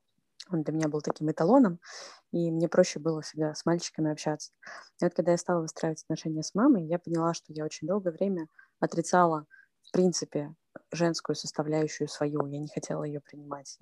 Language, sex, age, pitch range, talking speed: Russian, female, 20-39, 155-175 Hz, 180 wpm